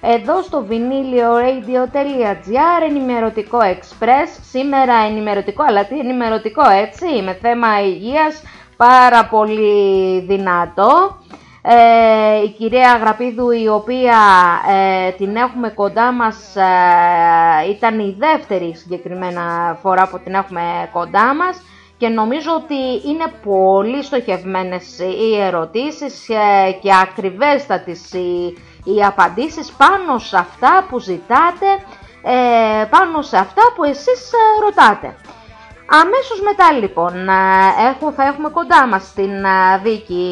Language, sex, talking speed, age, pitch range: Greek, female, 110 wpm, 20-39, 190-285 Hz